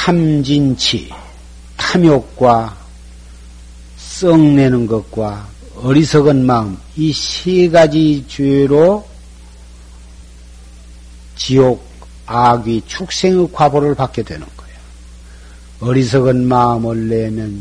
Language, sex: Korean, male